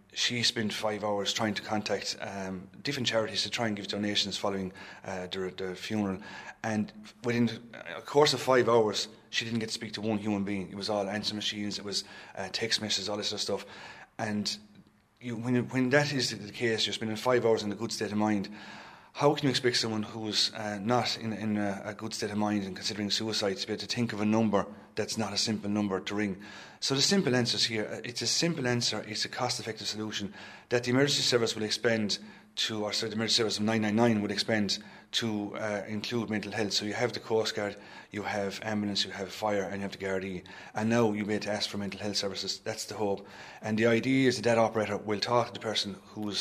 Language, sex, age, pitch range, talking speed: English, male, 30-49, 100-115 Hz, 235 wpm